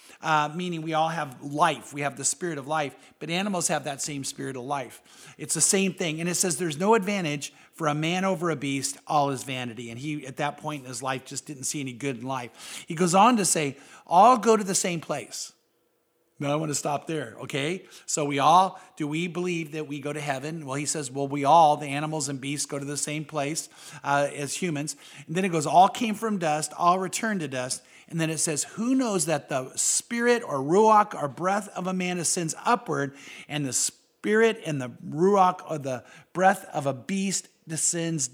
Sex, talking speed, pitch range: male, 225 wpm, 145-180 Hz